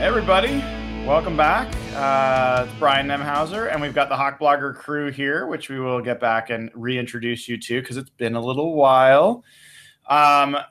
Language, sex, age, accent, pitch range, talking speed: English, male, 20-39, American, 115-140 Hz, 180 wpm